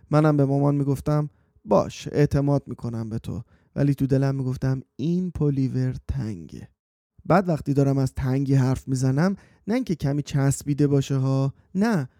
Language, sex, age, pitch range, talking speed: Persian, male, 30-49, 130-165 Hz, 150 wpm